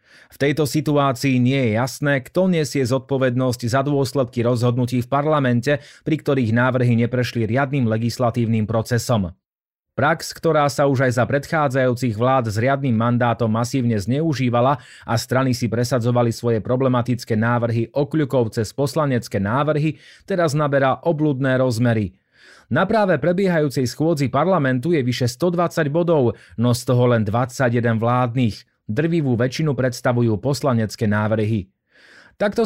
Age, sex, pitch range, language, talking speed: 30-49, male, 120-150 Hz, Slovak, 130 wpm